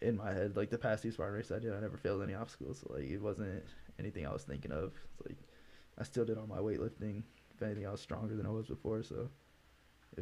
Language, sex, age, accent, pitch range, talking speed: English, male, 10-29, American, 80-115 Hz, 260 wpm